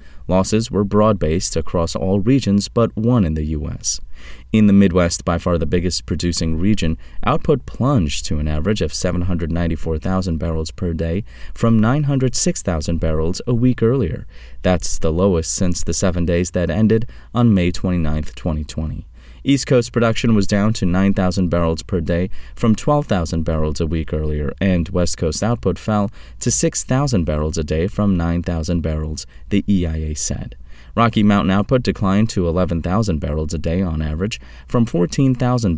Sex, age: male, 30-49